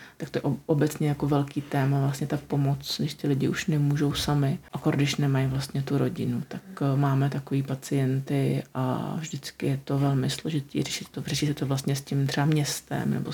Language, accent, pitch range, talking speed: Czech, native, 145-160 Hz, 190 wpm